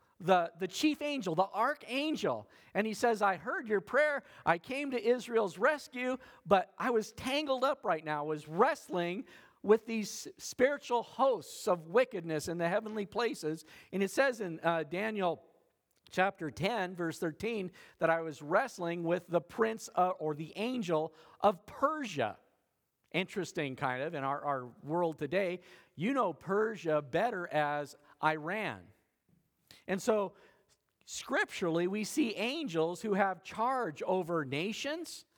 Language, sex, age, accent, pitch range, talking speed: English, male, 50-69, American, 170-230 Hz, 145 wpm